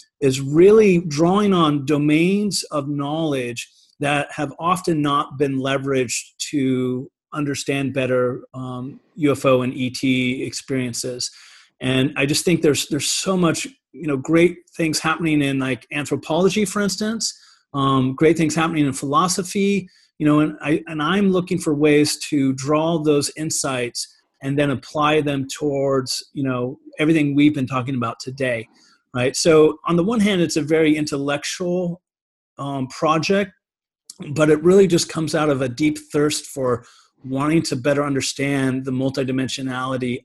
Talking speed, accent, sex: 150 wpm, American, male